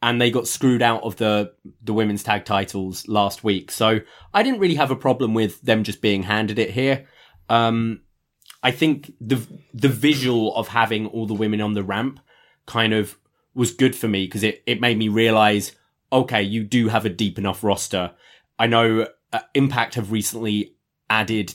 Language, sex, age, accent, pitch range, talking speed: English, male, 20-39, British, 105-130 Hz, 185 wpm